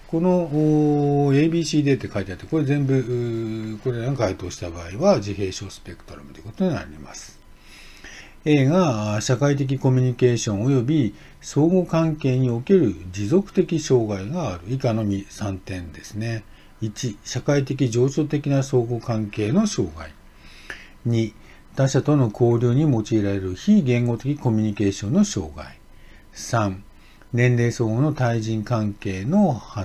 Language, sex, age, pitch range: Japanese, male, 50-69, 100-140 Hz